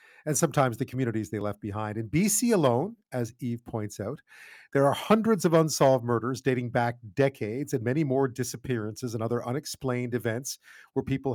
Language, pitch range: English, 120-150 Hz